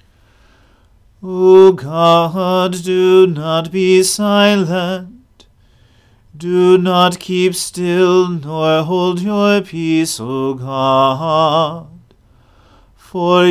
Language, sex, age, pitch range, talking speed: English, male, 40-59, 155-180 Hz, 75 wpm